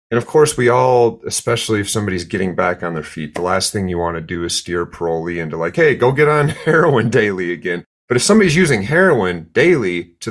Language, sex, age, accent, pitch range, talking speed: English, male, 30-49, American, 90-125 Hz, 225 wpm